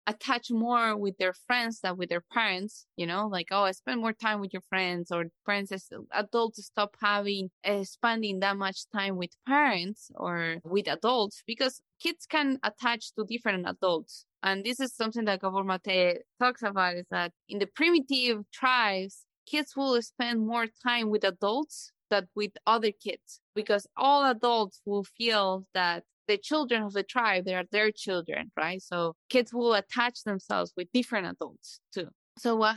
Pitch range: 190-235 Hz